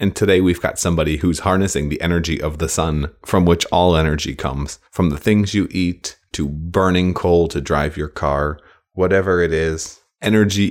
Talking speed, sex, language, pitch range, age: 185 wpm, male, English, 85-100 Hz, 30-49